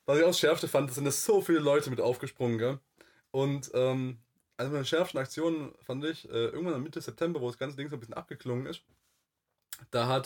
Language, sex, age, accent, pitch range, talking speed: German, male, 20-39, German, 110-130 Hz, 215 wpm